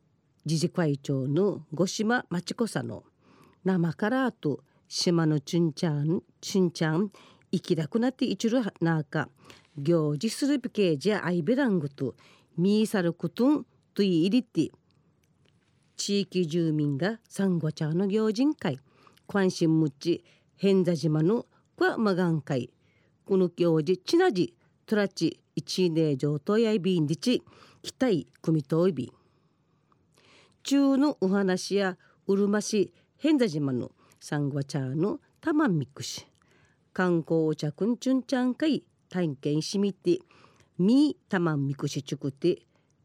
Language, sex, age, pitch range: Japanese, female, 40-59, 155-210 Hz